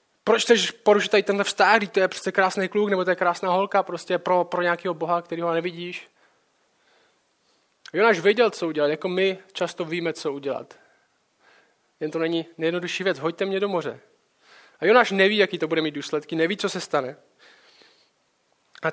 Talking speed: 180 wpm